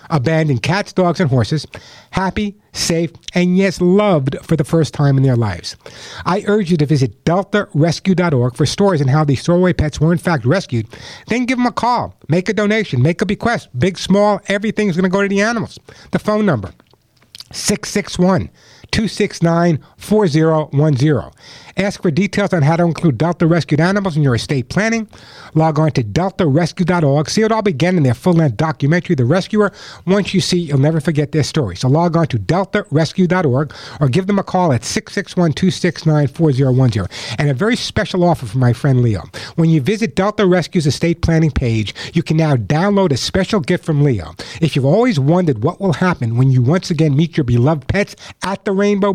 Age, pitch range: 60-79, 140-190 Hz